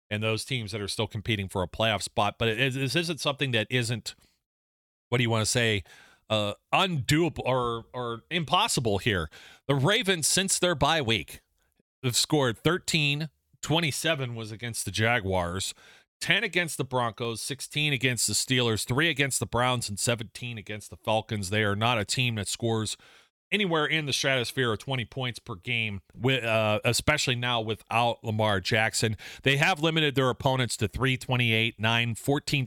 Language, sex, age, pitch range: English, male, 40-59, 110-130 Hz